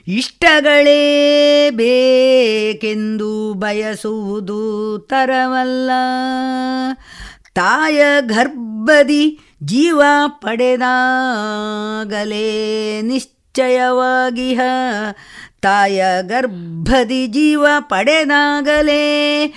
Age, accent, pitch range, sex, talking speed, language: 50-69, native, 215-290 Hz, female, 40 wpm, Kannada